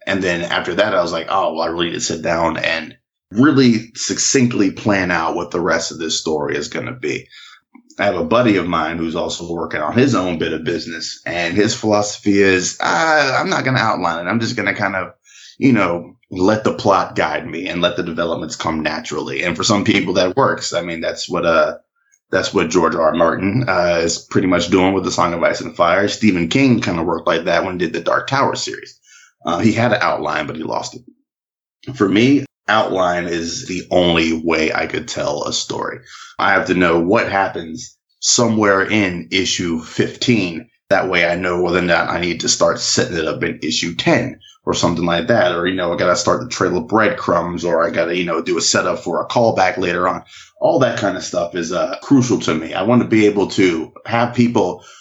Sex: male